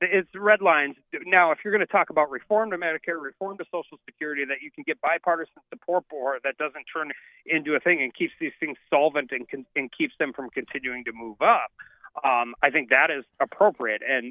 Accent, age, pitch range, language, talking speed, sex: American, 40-59, 130-180 Hz, English, 215 wpm, male